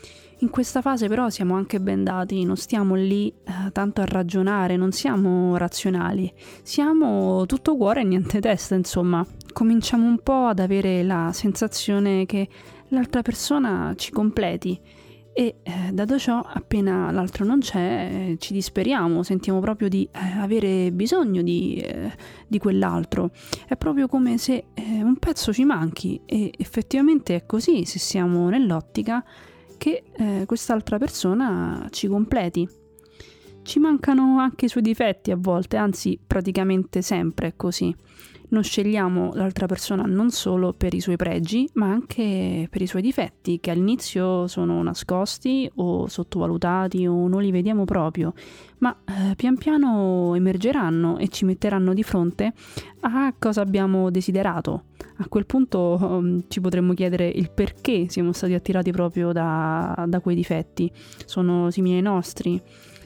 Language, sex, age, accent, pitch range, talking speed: Italian, female, 30-49, native, 180-225 Hz, 145 wpm